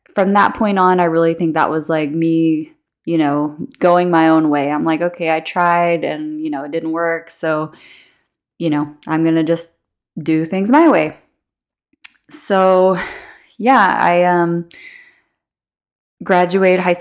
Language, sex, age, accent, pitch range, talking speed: English, female, 20-39, American, 160-185 Hz, 160 wpm